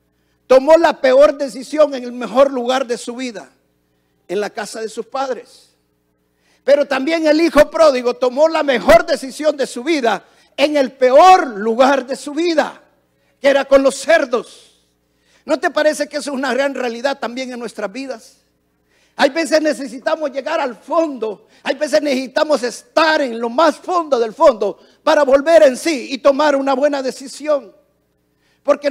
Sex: male